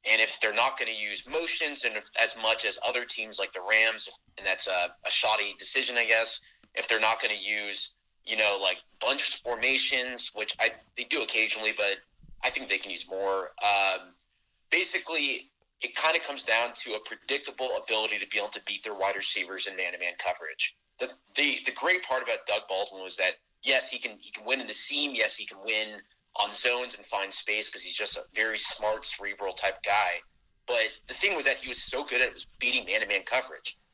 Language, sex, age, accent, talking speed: English, male, 30-49, American, 215 wpm